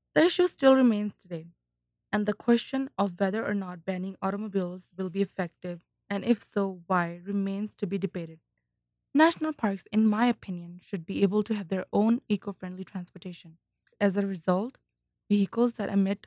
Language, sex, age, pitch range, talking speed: English, female, 20-39, 180-215 Hz, 165 wpm